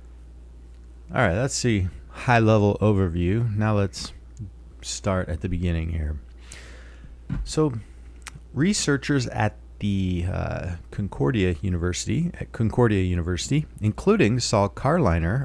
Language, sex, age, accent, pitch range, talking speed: English, male, 30-49, American, 65-110 Hz, 100 wpm